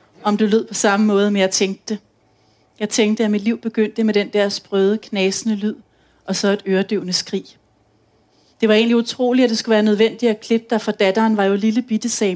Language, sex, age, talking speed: Danish, female, 30-49, 220 wpm